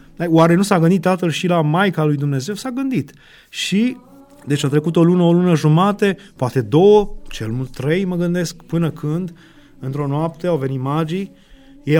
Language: Romanian